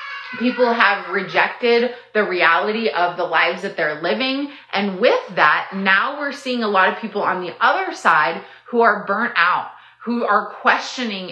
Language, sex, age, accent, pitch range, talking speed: English, female, 30-49, American, 185-235 Hz, 170 wpm